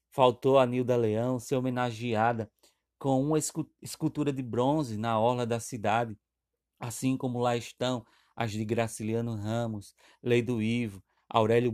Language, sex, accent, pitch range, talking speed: Portuguese, male, Brazilian, 110-130 Hz, 140 wpm